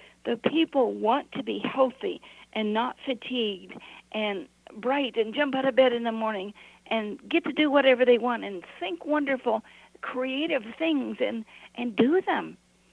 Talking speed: 160 wpm